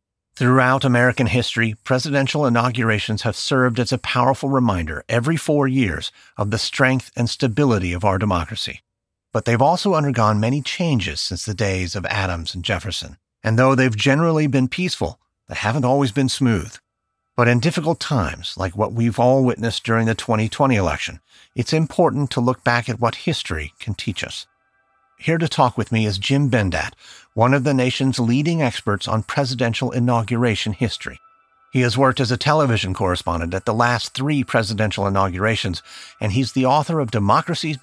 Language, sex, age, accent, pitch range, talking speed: English, male, 50-69, American, 105-135 Hz, 170 wpm